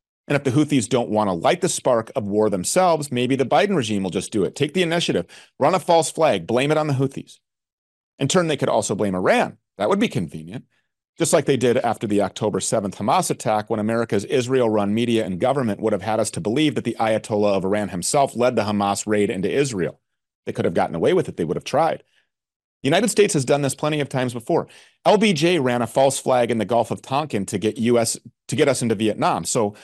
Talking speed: 235 wpm